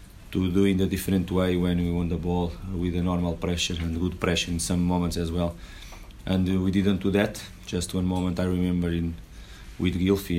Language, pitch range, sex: English, 85-95 Hz, male